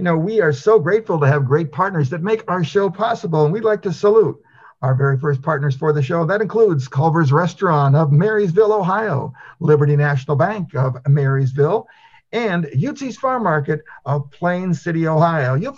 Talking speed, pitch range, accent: 180 wpm, 140-185 Hz, American